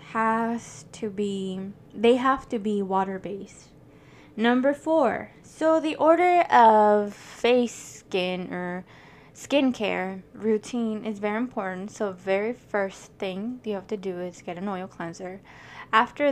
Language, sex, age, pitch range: English, female, 10-29, 195-235 Hz